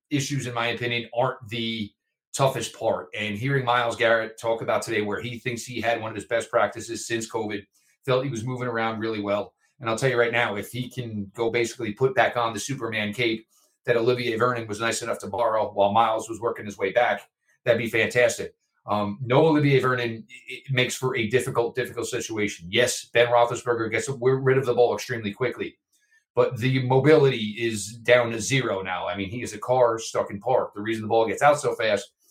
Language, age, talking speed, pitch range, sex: English, 40-59, 210 wpm, 115-135 Hz, male